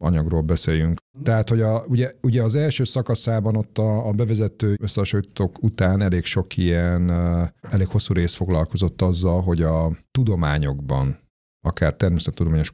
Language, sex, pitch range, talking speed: Hungarian, male, 80-100 Hz, 135 wpm